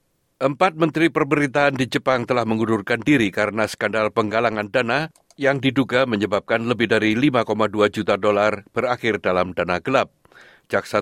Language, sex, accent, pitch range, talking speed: Indonesian, male, native, 105-135 Hz, 135 wpm